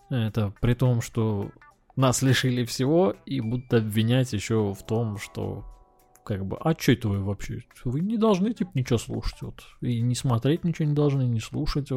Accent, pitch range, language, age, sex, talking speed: native, 105-130 Hz, Russian, 20-39, male, 175 wpm